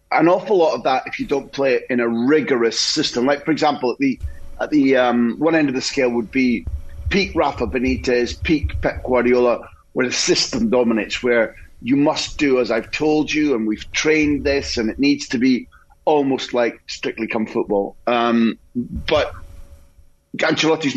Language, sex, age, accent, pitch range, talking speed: English, male, 30-49, British, 115-150 Hz, 185 wpm